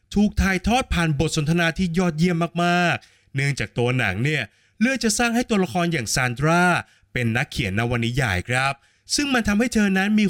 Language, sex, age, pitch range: Thai, male, 20-39, 120-180 Hz